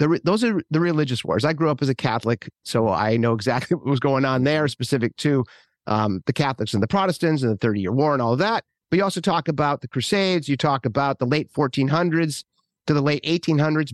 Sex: male